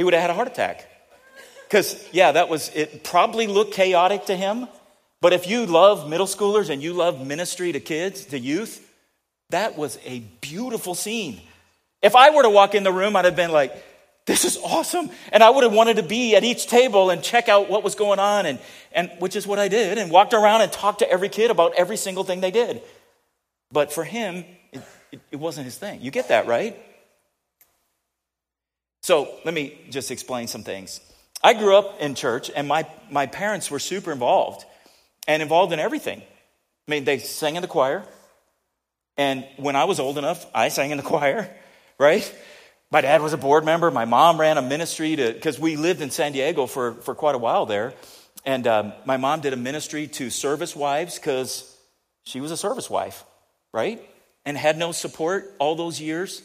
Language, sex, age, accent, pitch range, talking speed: English, male, 40-59, American, 150-205 Hz, 200 wpm